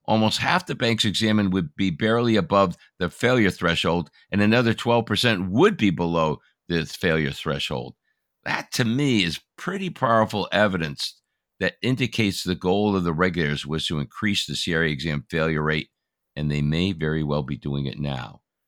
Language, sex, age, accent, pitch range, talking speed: English, male, 60-79, American, 85-115 Hz, 165 wpm